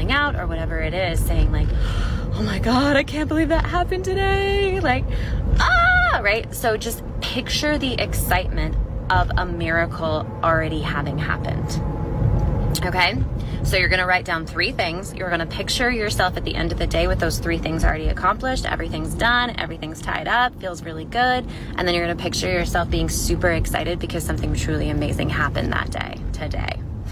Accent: American